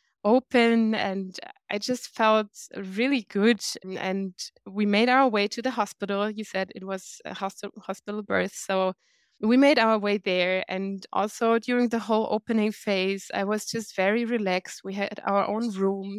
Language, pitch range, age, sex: English, 195-235 Hz, 20-39, female